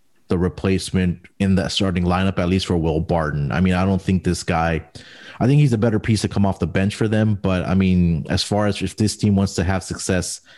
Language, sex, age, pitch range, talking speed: English, male, 30-49, 90-110 Hz, 250 wpm